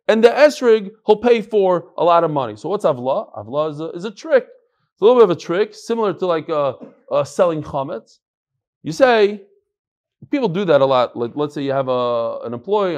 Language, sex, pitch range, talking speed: English, male, 150-220 Hz, 210 wpm